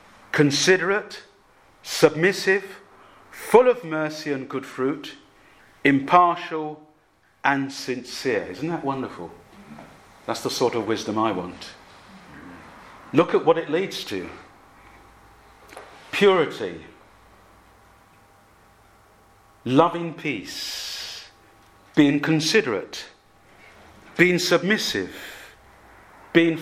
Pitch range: 110-170 Hz